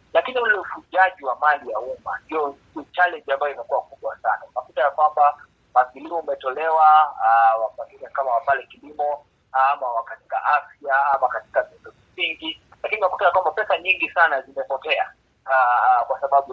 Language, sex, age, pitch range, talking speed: Swahili, male, 30-49, 140-215 Hz, 135 wpm